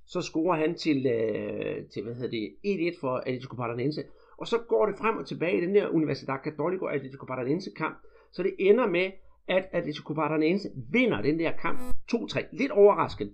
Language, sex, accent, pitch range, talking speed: Danish, male, native, 145-210 Hz, 175 wpm